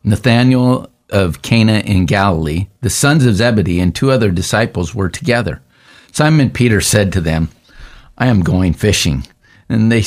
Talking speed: 155 wpm